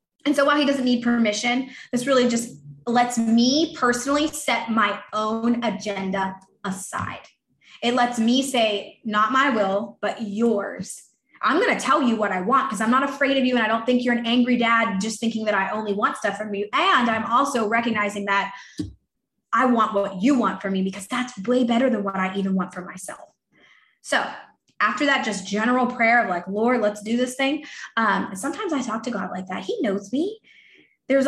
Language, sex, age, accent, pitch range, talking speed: English, female, 20-39, American, 210-270 Hz, 205 wpm